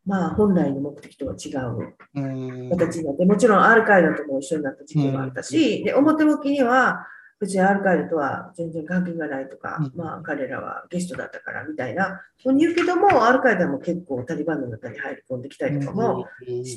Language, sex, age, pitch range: Japanese, female, 40-59, 150-210 Hz